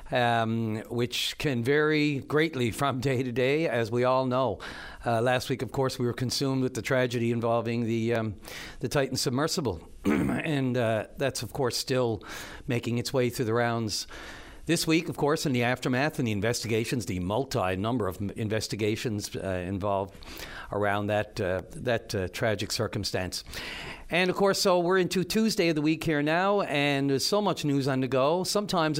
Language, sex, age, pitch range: English, male, 60-79, 115-140 Hz